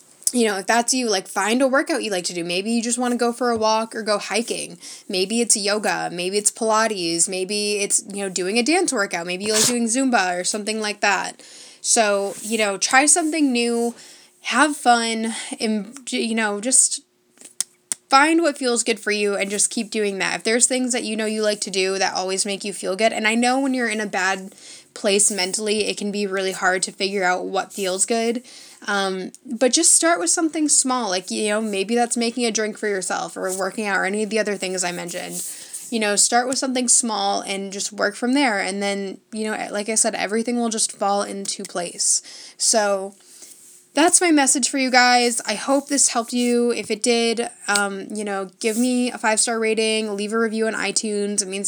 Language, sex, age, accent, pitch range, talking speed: English, female, 10-29, American, 200-240 Hz, 220 wpm